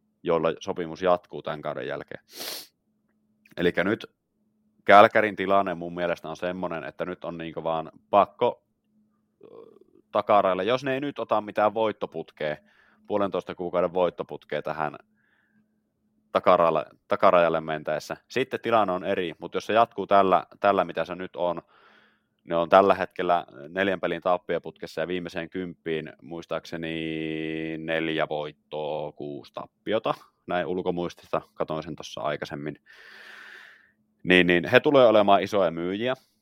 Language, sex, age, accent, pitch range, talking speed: Finnish, male, 30-49, native, 80-115 Hz, 125 wpm